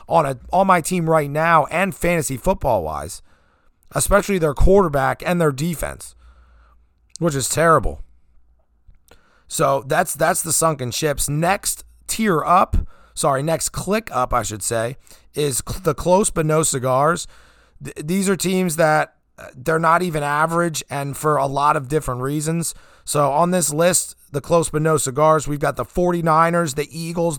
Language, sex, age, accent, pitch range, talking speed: English, male, 30-49, American, 135-170 Hz, 160 wpm